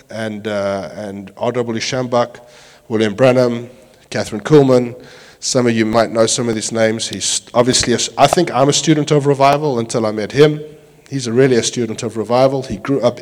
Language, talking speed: English, 185 wpm